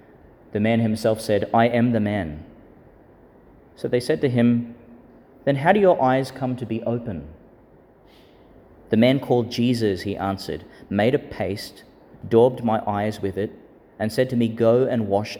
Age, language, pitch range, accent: 30-49, English, 100-125 Hz, Australian